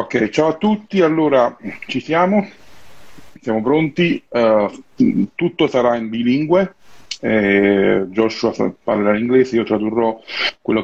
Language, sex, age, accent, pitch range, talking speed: Italian, male, 40-59, native, 110-130 Hz, 120 wpm